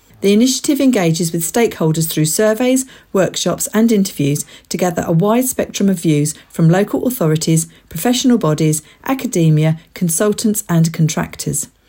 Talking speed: 130 wpm